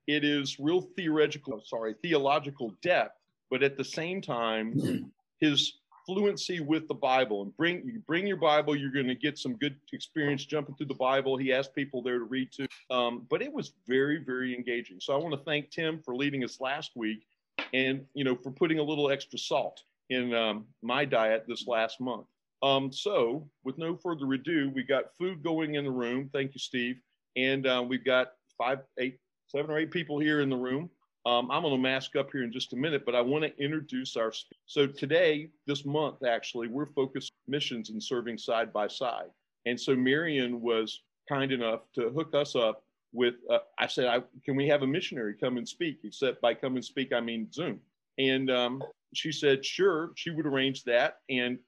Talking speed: 205 wpm